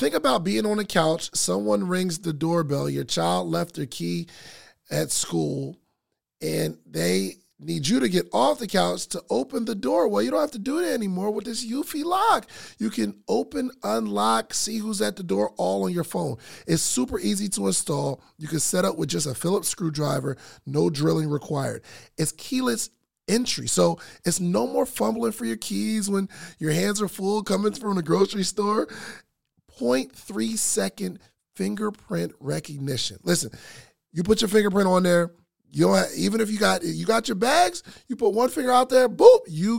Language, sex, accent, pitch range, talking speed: English, male, American, 140-210 Hz, 185 wpm